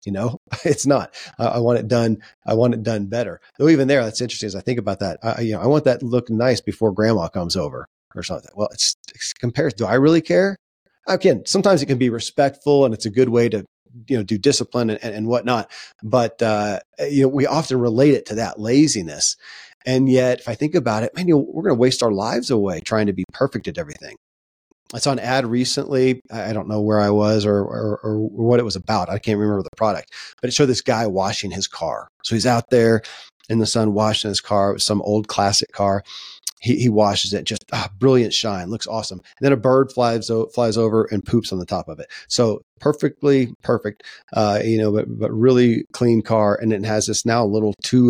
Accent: American